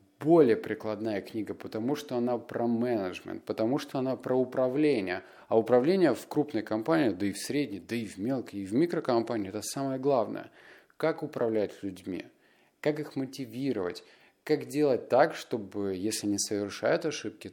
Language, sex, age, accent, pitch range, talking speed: Russian, male, 30-49, native, 105-140 Hz, 160 wpm